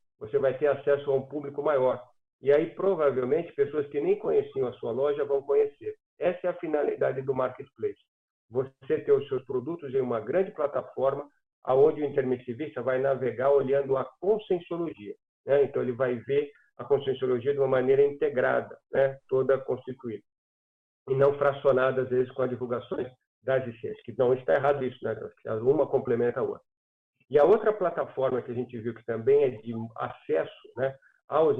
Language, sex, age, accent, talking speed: Portuguese, male, 50-69, Brazilian, 175 wpm